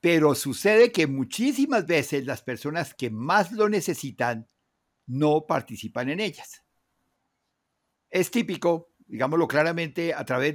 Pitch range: 145-200 Hz